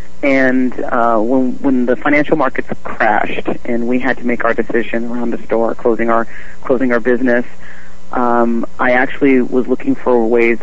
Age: 40-59